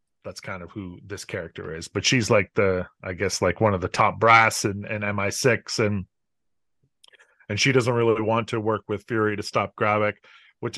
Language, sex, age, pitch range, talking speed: English, male, 30-49, 100-115 Hz, 205 wpm